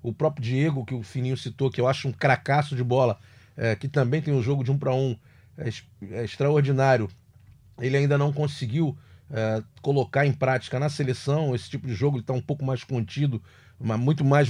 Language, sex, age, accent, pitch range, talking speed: Portuguese, male, 40-59, Brazilian, 120-150 Hz, 190 wpm